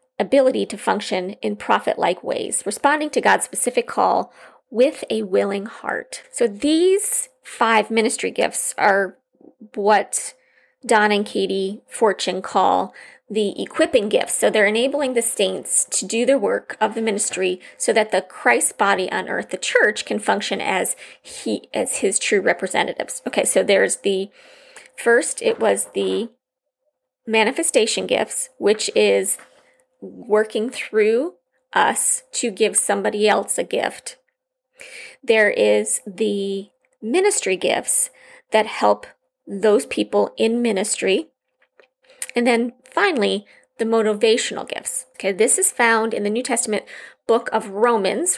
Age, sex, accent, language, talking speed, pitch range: 30-49, female, American, English, 135 wpm, 205-345 Hz